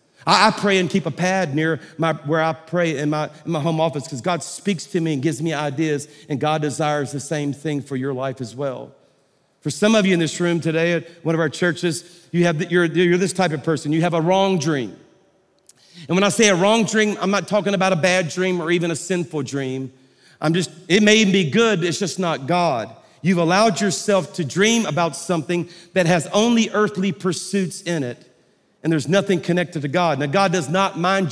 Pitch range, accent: 150-185 Hz, American